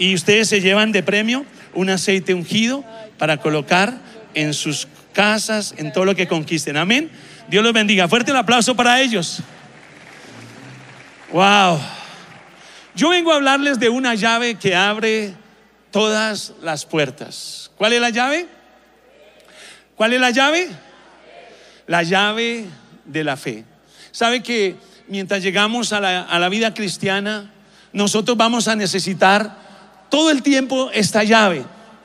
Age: 40-59